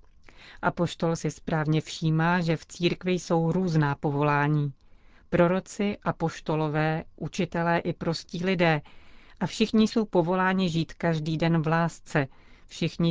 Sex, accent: female, native